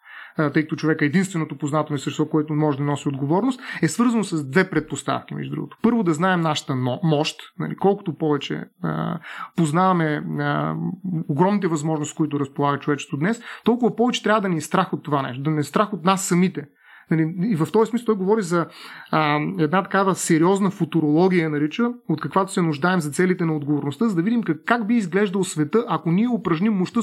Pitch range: 155-200 Hz